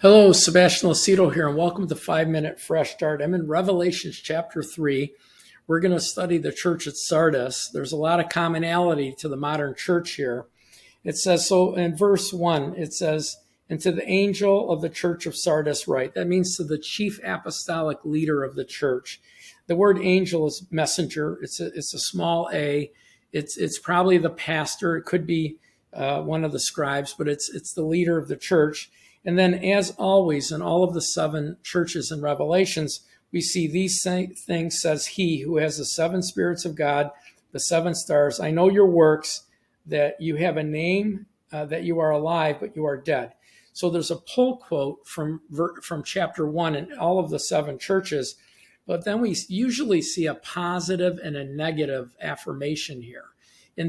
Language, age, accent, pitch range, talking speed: English, 50-69, American, 155-180 Hz, 185 wpm